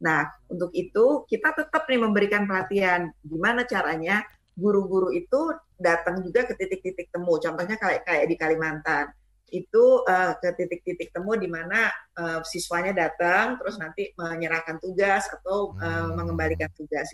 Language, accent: Indonesian, native